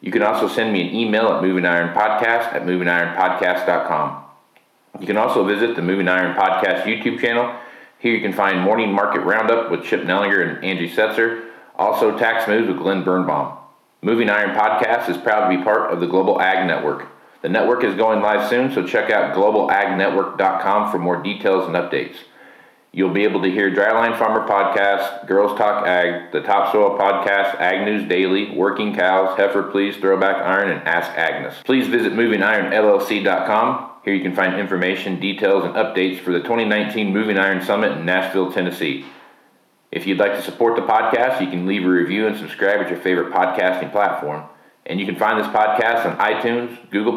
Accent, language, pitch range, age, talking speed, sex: American, English, 90-110 Hz, 40-59, 185 wpm, male